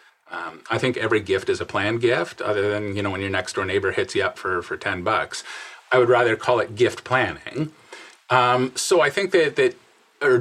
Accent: American